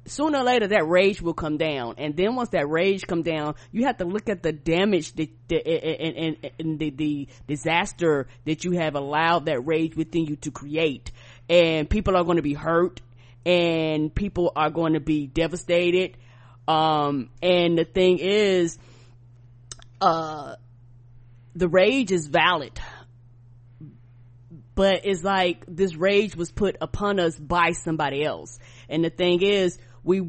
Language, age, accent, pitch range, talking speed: English, 20-39, American, 150-185 Hz, 160 wpm